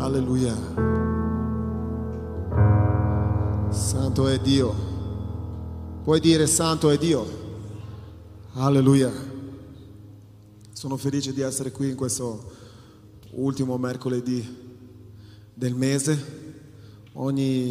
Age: 30-49